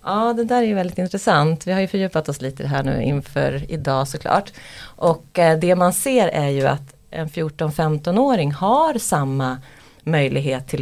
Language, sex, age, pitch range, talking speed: Swedish, female, 30-49, 135-165 Hz, 165 wpm